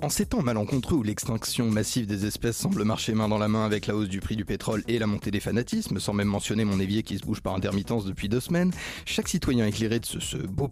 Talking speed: 265 wpm